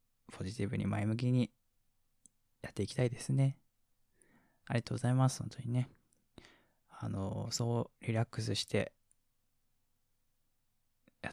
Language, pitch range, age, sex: Japanese, 115-135 Hz, 20-39, male